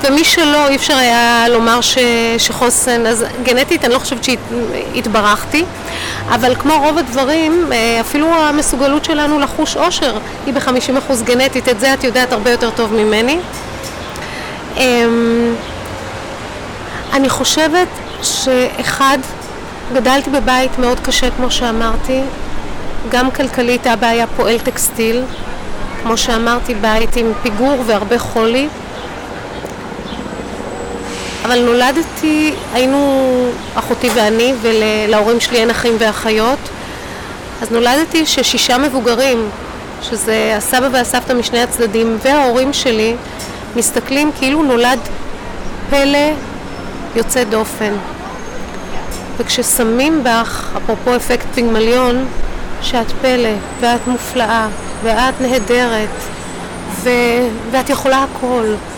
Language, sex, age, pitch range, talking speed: Hebrew, female, 30-49, 230-270 Hz, 100 wpm